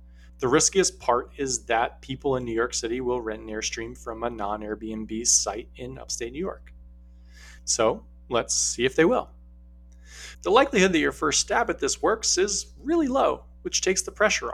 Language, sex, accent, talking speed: English, male, American, 180 wpm